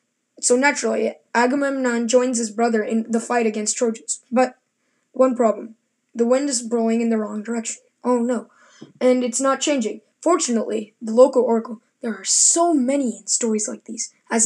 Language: English